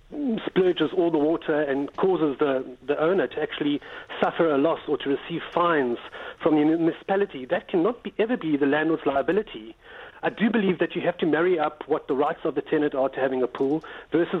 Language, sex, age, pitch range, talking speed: English, male, 40-59, 145-185 Hz, 210 wpm